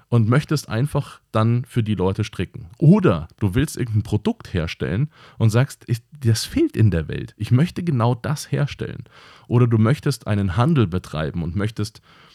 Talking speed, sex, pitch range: 165 wpm, male, 95-125 Hz